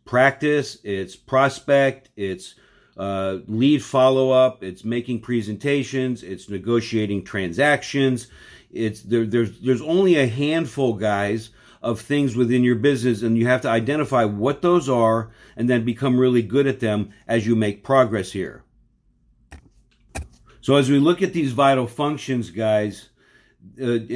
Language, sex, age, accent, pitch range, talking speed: English, male, 50-69, American, 115-135 Hz, 140 wpm